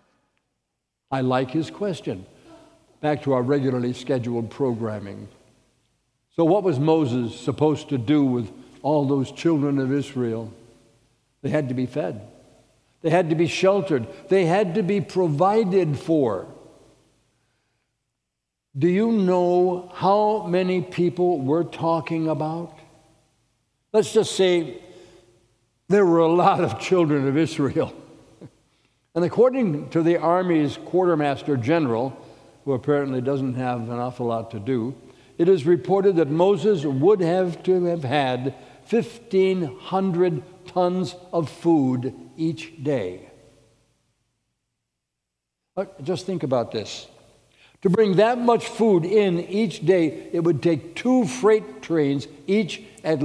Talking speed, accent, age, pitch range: 125 wpm, American, 60-79, 130-180 Hz